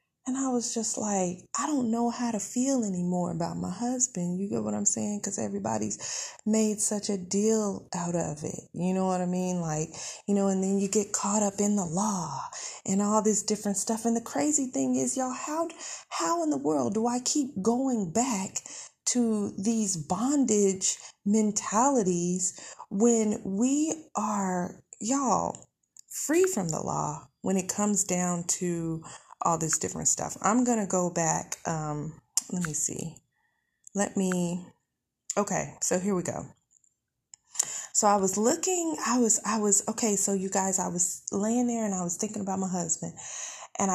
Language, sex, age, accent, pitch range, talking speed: English, female, 30-49, American, 180-235 Hz, 175 wpm